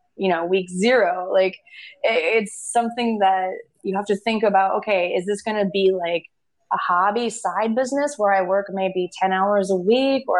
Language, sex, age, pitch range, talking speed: English, female, 20-39, 185-235 Hz, 190 wpm